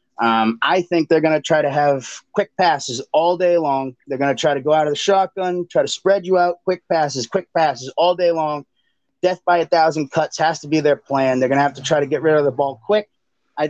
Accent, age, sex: American, 30-49, male